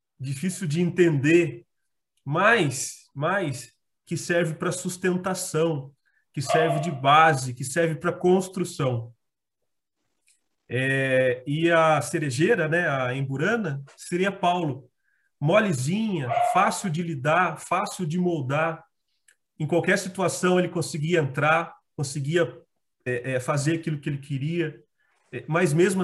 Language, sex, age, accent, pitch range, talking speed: Portuguese, male, 30-49, Brazilian, 145-180 Hz, 115 wpm